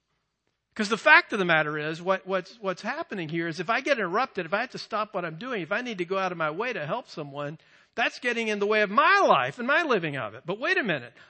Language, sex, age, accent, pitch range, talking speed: English, male, 50-69, American, 175-275 Hz, 290 wpm